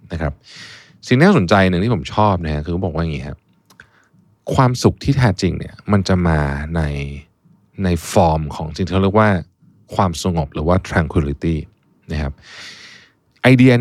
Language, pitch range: Thai, 80-105 Hz